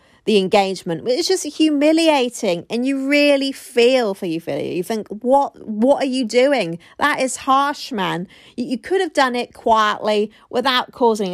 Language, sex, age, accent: English, female, 40-59, British